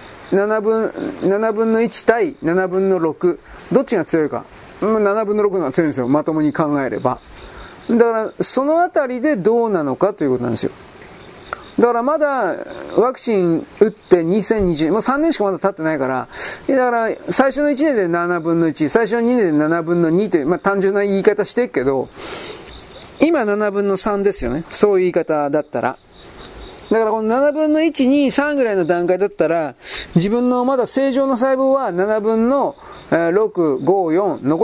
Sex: male